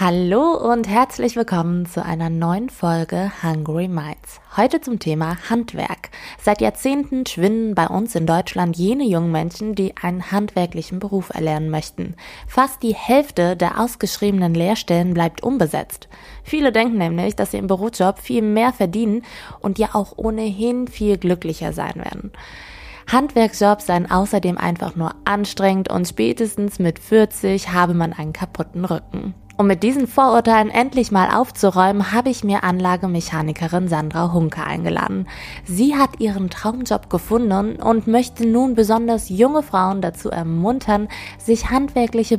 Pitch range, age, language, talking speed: 175-230 Hz, 20-39, German, 140 wpm